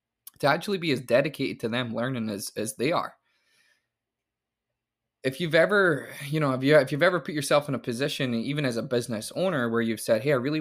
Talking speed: 215 wpm